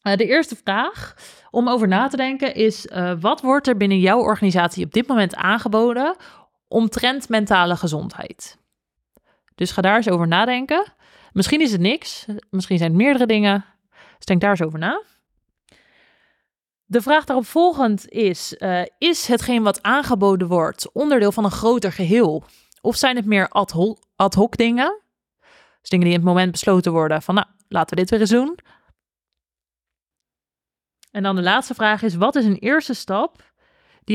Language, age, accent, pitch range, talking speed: Dutch, 20-39, Dutch, 185-245 Hz, 170 wpm